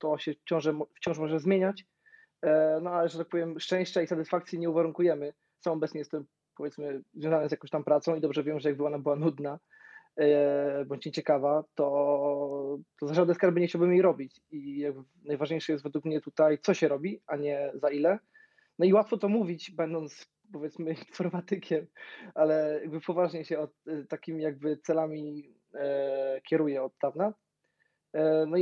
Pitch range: 150-175 Hz